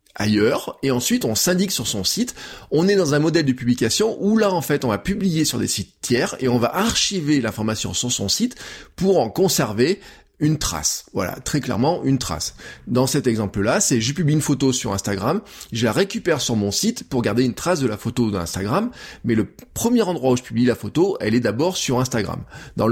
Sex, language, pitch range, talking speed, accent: male, French, 110-165 Hz, 220 wpm, French